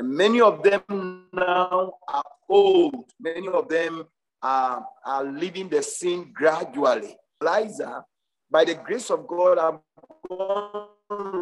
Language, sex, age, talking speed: English, male, 50-69, 120 wpm